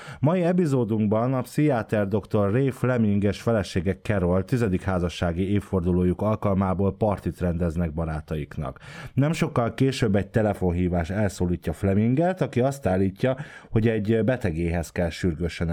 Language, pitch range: Hungarian, 90-120 Hz